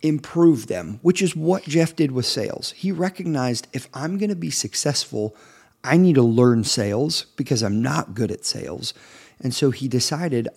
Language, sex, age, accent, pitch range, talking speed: English, male, 40-59, American, 115-150 Hz, 180 wpm